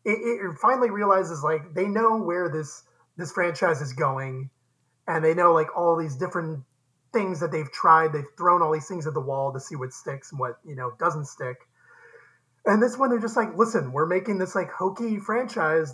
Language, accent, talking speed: English, American, 205 wpm